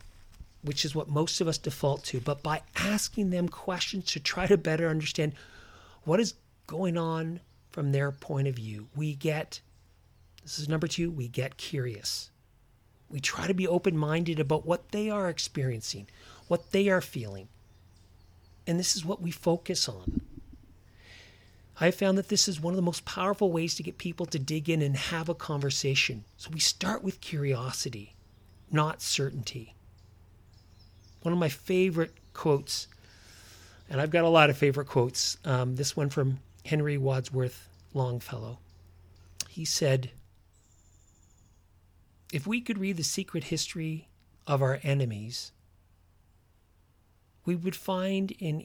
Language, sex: English, male